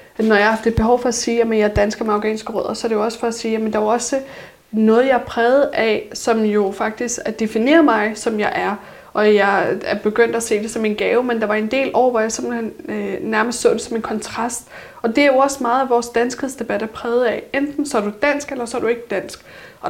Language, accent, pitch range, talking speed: Danish, native, 205-240 Hz, 260 wpm